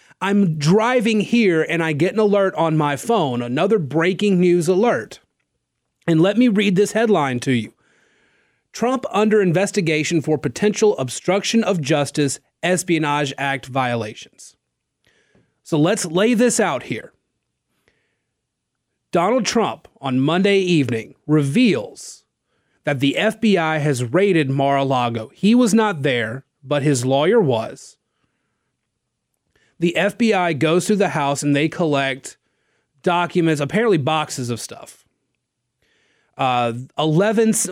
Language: English